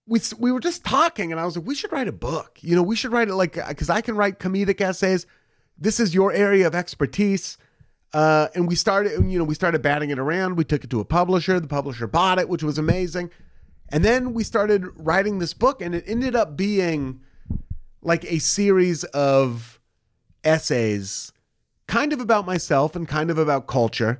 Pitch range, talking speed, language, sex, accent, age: 130-180 Hz, 205 wpm, English, male, American, 30-49